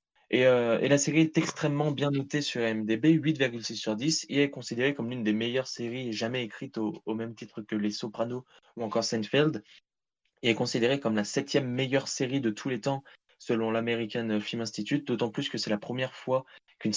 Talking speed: 205 wpm